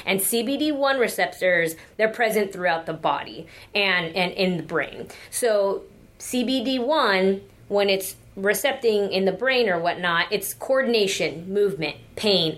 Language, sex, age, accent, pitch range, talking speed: English, female, 20-39, American, 175-215 Hz, 130 wpm